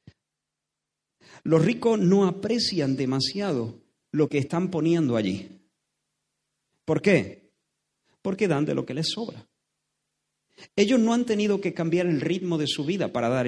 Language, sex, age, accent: Spanish, male, 40-59, Spanish